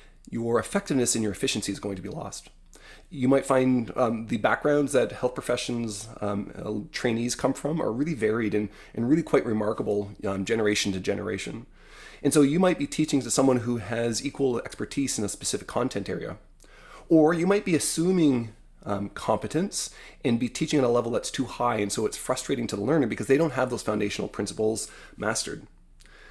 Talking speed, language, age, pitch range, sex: 190 wpm, English, 30-49, 105-140 Hz, male